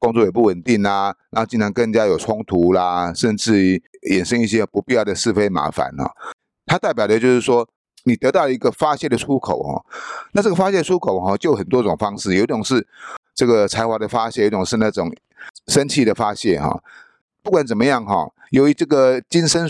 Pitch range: 100-145 Hz